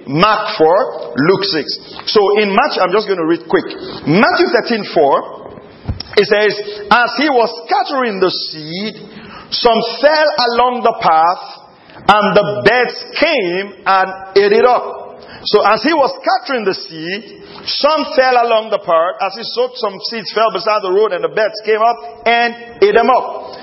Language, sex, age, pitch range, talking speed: English, male, 50-69, 195-245 Hz, 170 wpm